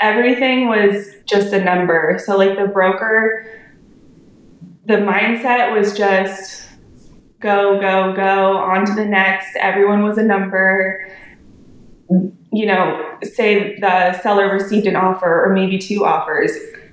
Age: 20-39